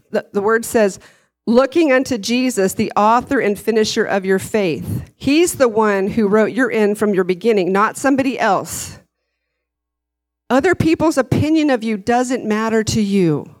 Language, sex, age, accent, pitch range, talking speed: English, female, 40-59, American, 190-275 Hz, 155 wpm